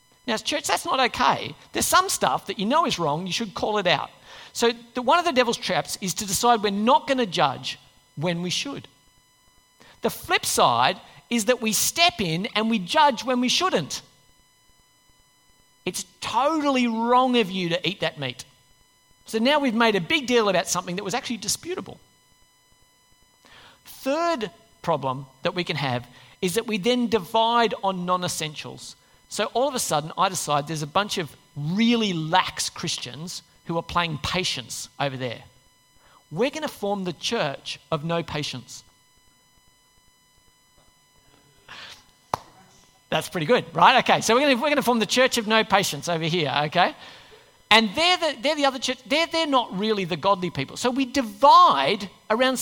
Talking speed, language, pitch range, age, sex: 170 wpm, English, 160-250 Hz, 40-59, male